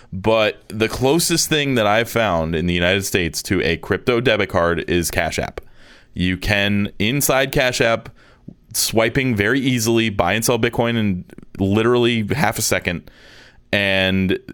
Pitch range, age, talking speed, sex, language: 95-120 Hz, 20-39, 155 wpm, male, English